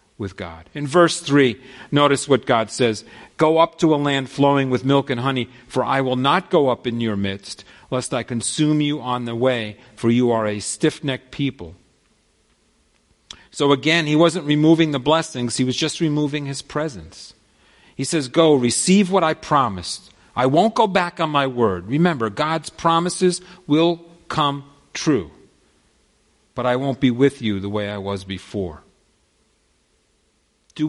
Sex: male